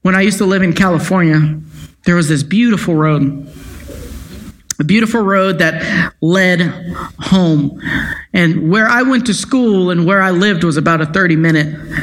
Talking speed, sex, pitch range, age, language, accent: 165 wpm, male, 160-225 Hz, 40-59, English, American